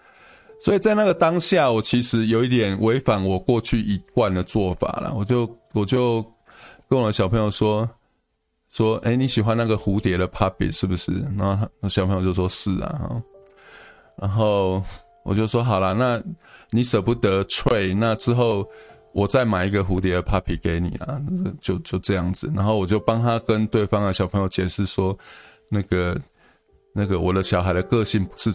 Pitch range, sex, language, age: 95-120 Hz, male, Chinese, 20-39